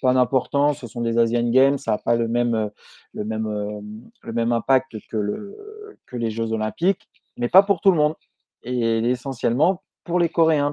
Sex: male